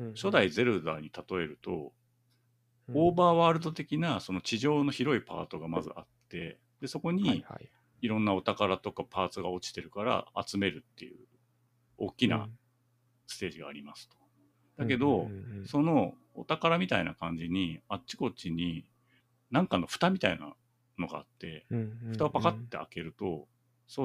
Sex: male